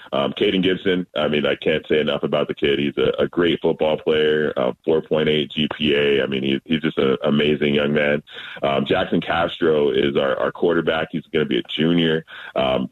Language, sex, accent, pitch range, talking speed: English, male, American, 75-85 Hz, 200 wpm